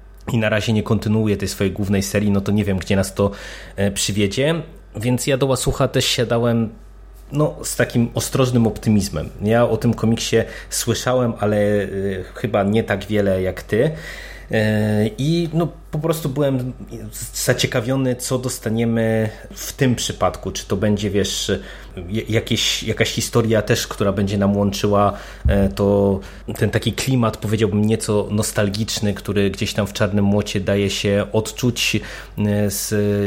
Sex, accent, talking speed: male, native, 145 wpm